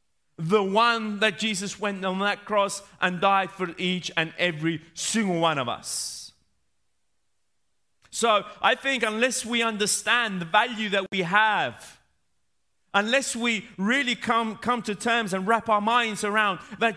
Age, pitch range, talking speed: 30-49, 145-215 Hz, 150 wpm